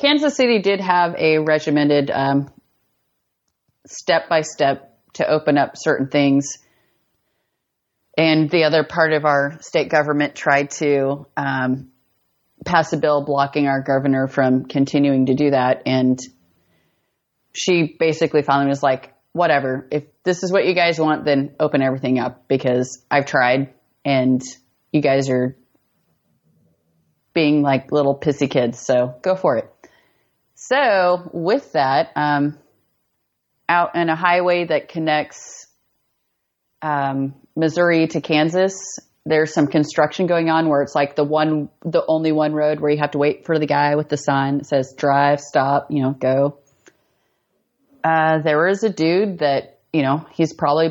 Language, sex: English, female